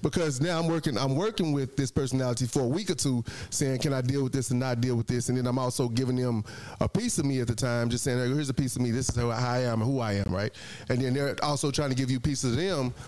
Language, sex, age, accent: English, male, 30-49, American